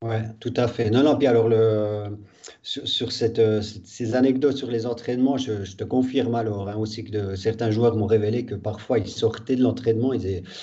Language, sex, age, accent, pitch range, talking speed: French, male, 40-59, French, 105-125 Hz, 220 wpm